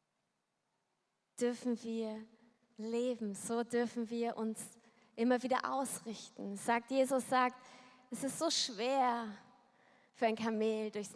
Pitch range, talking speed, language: 225-260 Hz, 115 wpm, German